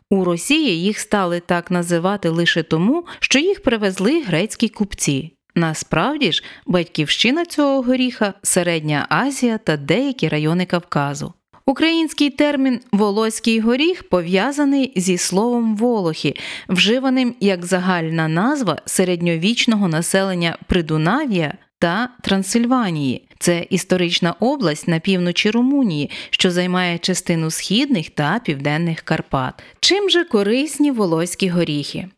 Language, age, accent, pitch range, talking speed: Ukrainian, 30-49, native, 170-245 Hz, 115 wpm